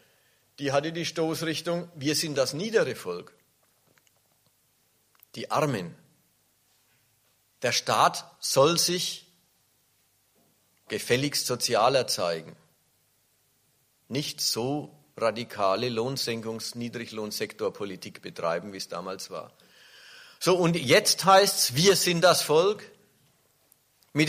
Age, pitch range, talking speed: 50-69, 130-175 Hz, 90 wpm